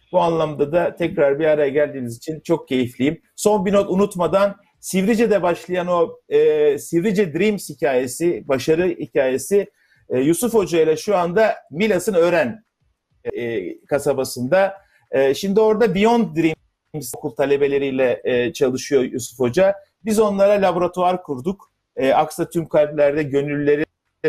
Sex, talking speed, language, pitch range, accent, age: male, 130 wpm, Turkish, 150-195 Hz, native, 50-69